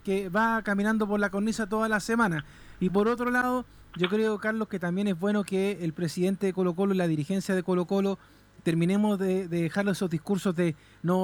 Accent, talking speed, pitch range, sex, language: Argentinian, 205 wpm, 190-245 Hz, male, Spanish